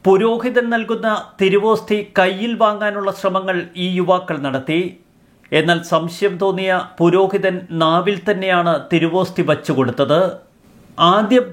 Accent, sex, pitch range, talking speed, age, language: native, male, 175-210 Hz, 95 wpm, 50-69, Malayalam